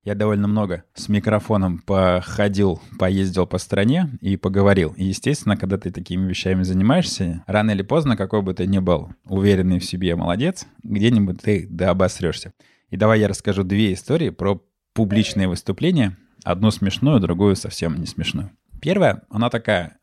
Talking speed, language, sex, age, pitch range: 155 wpm, Russian, male, 20-39, 95-115 Hz